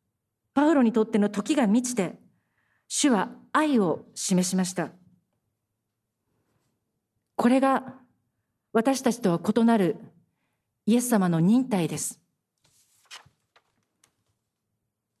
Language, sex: Japanese, female